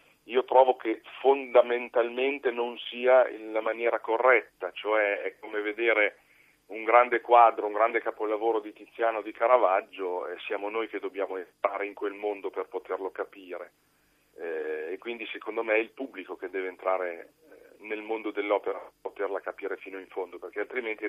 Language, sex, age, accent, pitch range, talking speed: Italian, male, 40-59, native, 105-125 Hz, 160 wpm